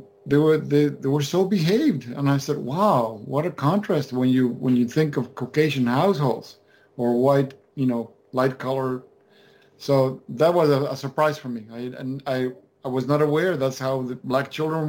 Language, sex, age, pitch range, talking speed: English, male, 50-69, 125-145 Hz, 195 wpm